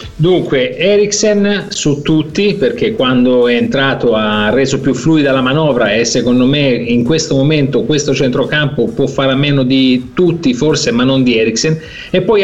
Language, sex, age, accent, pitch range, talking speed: Italian, male, 40-59, native, 135-170 Hz, 170 wpm